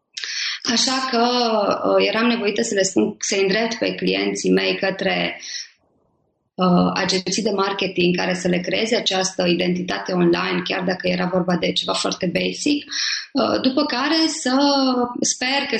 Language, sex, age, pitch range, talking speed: Romanian, female, 20-39, 185-245 Hz, 145 wpm